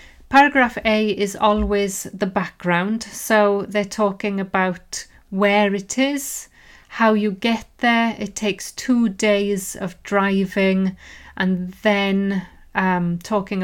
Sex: female